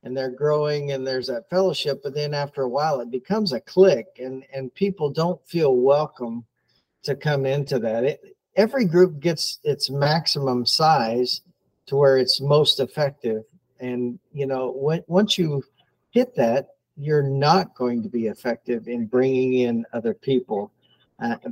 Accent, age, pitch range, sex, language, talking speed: American, 50-69, 125-150 Hz, male, English, 160 wpm